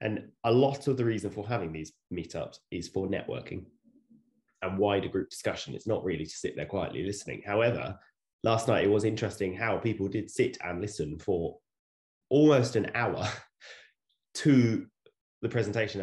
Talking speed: 165 wpm